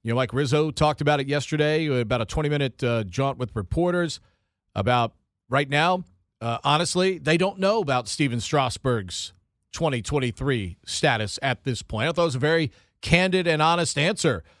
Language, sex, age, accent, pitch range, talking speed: English, male, 40-59, American, 120-160 Hz, 165 wpm